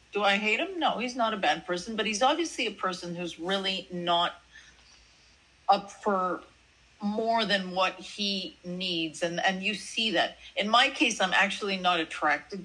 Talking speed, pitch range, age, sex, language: 175 wpm, 165-200 Hz, 50-69, female, English